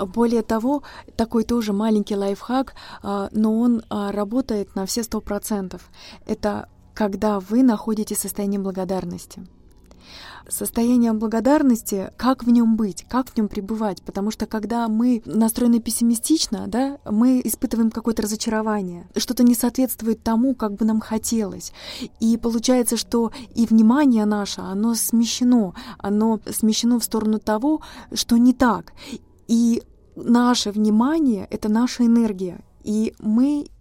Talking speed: 130 wpm